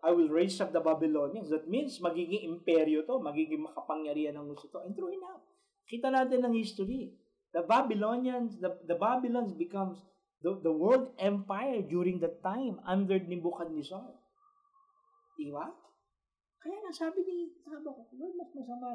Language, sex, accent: English, male, Filipino